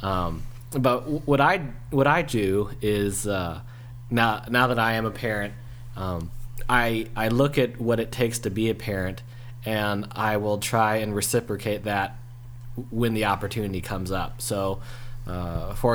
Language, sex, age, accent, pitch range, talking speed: English, male, 20-39, American, 100-120 Hz, 160 wpm